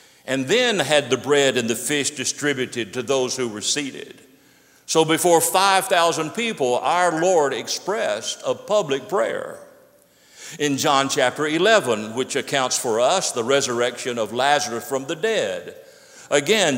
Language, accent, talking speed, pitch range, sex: English, American, 145 wpm, 130-195 Hz, male